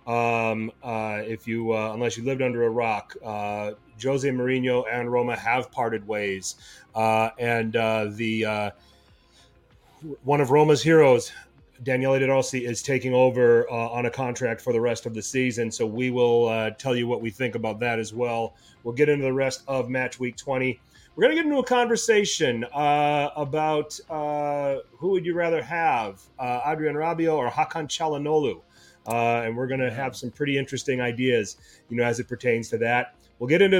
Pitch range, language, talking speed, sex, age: 115-135 Hz, English, 190 wpm, male, 30-49